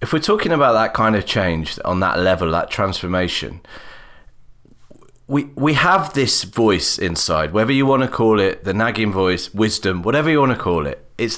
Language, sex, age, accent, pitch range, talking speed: English, male, 30-49, British, 90-120 Hz, 180 wpm